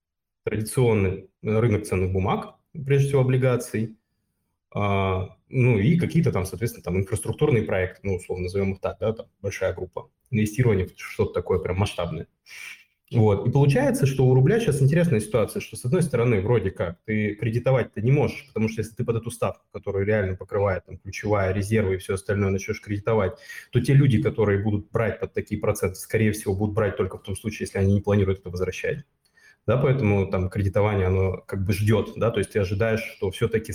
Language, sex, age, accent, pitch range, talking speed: Russian, male, 20-39, native, 95-120 Hz, 185 wpm